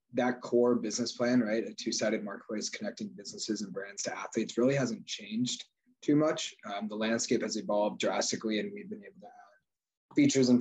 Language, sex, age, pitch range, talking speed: English, male, 20-39, 110-130 Hz, 185 wpm